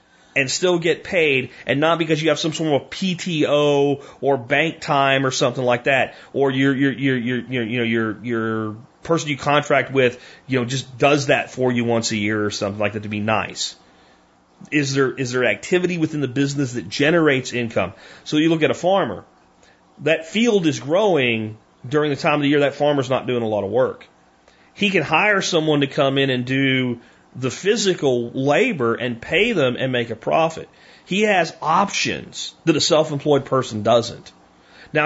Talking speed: 195 wpm